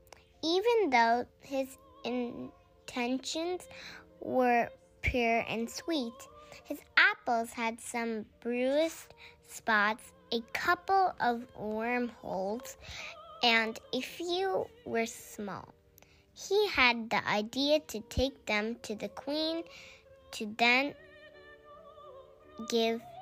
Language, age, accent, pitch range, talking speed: English, 10-29, American, 220-275 Hz, 95 wpm